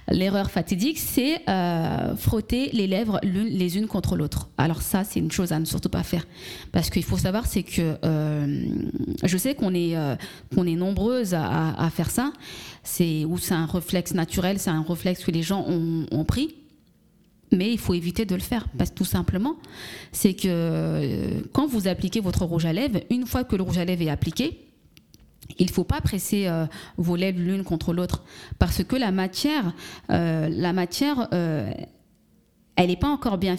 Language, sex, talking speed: French, female, 195 wpm